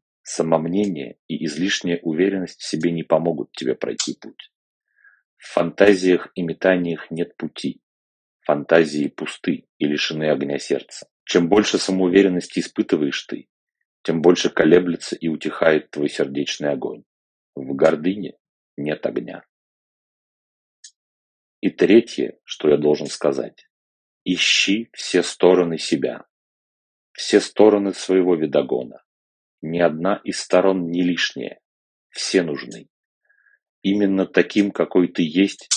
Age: 40-59